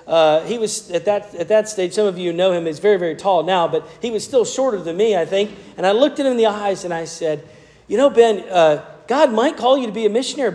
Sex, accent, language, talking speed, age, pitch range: male, American, English, 285 wpm, 40-59, 165-235 Hz